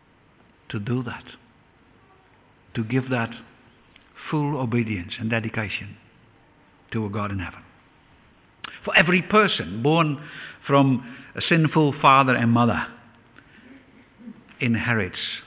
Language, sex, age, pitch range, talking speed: English, male, 60-79, 115-190 Hz, 100 wpm